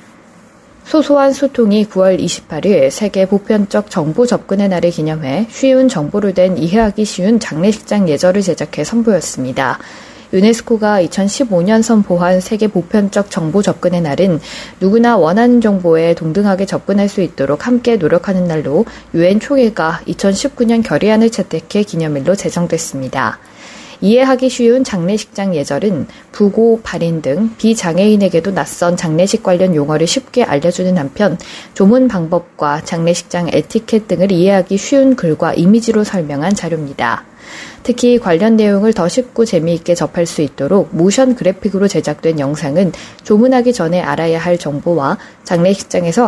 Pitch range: 170-230 Hz